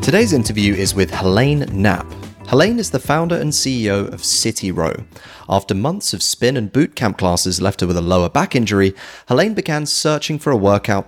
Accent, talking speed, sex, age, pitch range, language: British, 195 wpm, male, 30-49, 95-125 Hz, English